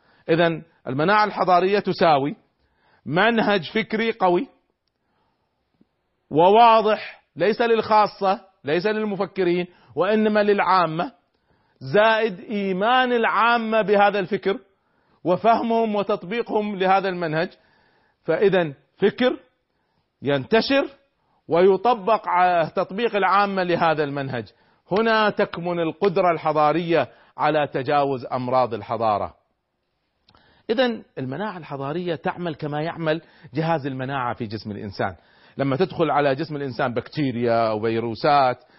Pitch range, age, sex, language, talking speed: 145-205 Hz, 40-59, male, Arabic, 90 wpm